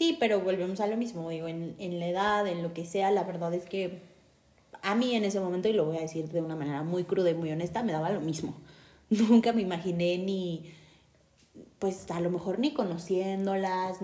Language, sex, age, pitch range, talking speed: Spanish, female, 30-49, 170-210 Hz, 220 wpm